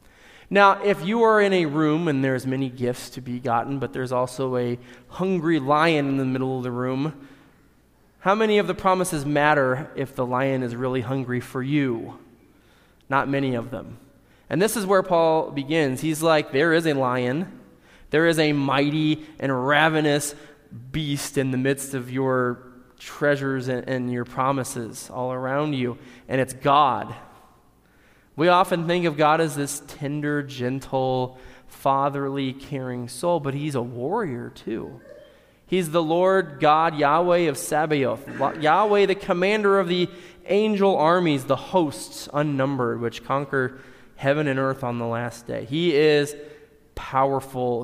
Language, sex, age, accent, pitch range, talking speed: English, male, 20-39, American, 130-160 Hz, 155 wpm